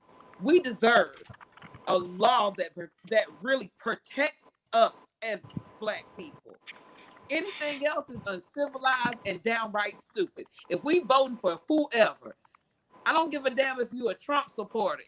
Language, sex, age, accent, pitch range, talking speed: English, female, 40-59, American, 215-270 Hz, 135 wpm